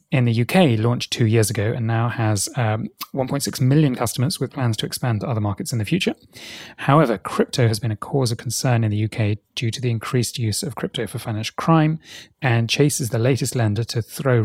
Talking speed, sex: 215 wpm, male